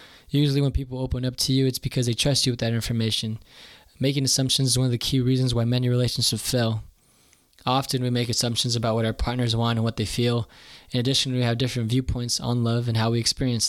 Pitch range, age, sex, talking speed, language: 115-130 Hz, 20-39, male, 230 wpm, English